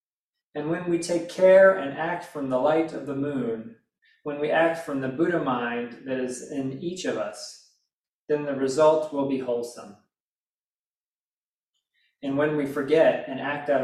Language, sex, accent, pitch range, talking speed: English, male, American, 135-160 Hz, 170 wpm